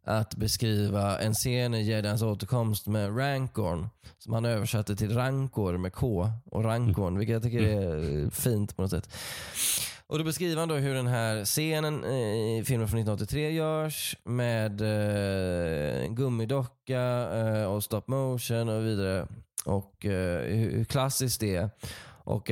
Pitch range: 105-135 Hz